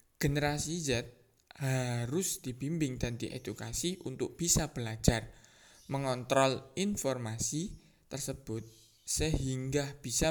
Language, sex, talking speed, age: Indonesian, male, 80 wpm, 20-39